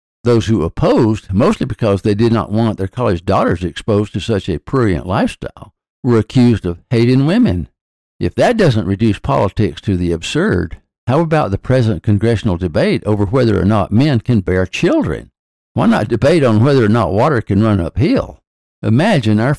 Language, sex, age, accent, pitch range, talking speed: English, male, 60-79, American, 100-125 Hz, 180 wpm